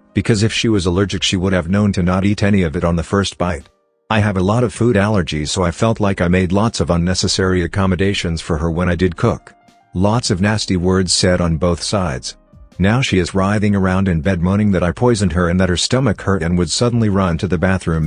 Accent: American